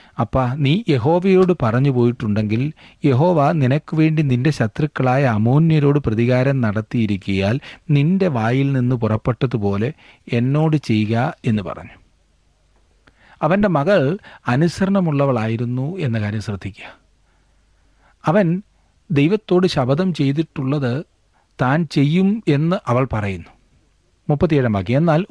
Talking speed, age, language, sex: 90 wpm, 40-59, Malayalam, male